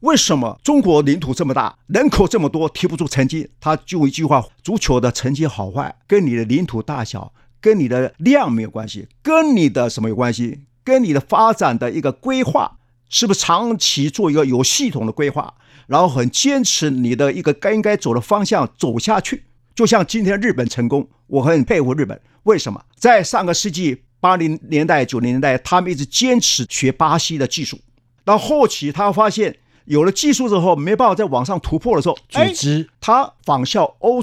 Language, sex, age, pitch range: Chinese, male, 50-69, 130-205 Hz